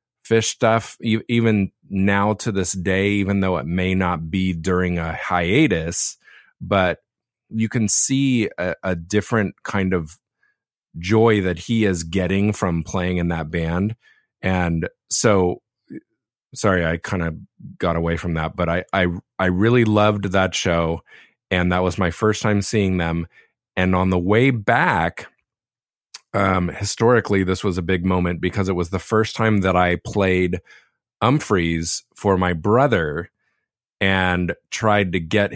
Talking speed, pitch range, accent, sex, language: 150 wpm, 85-105 Hz, American, male, English